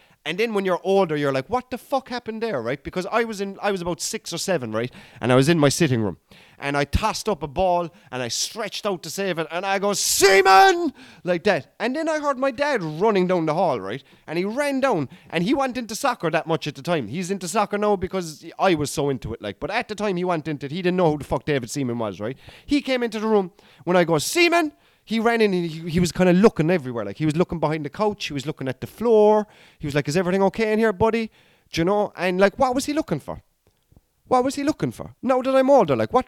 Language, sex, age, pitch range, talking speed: English, male, 30-49, 165-255 Hz, 275 wpm